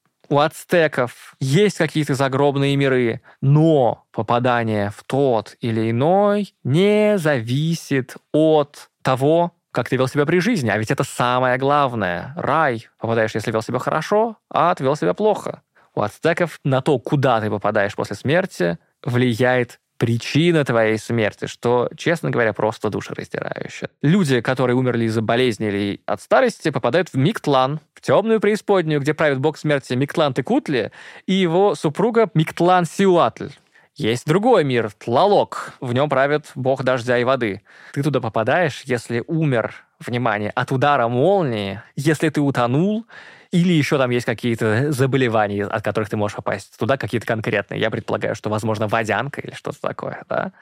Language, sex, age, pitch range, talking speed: Russian, male, 20-39, 120-155 Hz, 150 wpm